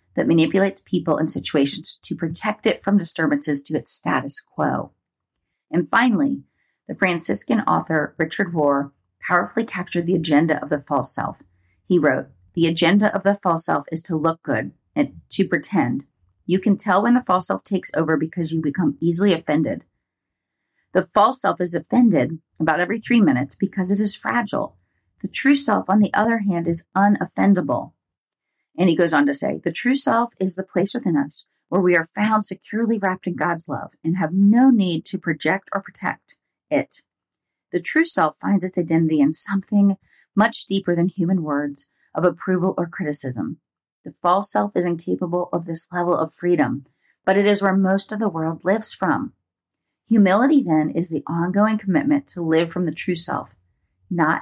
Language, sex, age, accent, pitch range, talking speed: English, female, 40-59, American, 155-200 Hz, 180 wpm